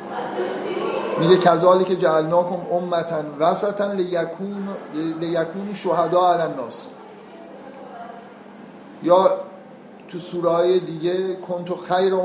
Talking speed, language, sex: 85 wpm, Persian, male